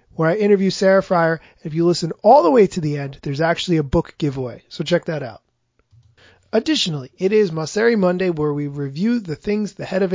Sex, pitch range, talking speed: male, 155-210 Hz, 215 wpm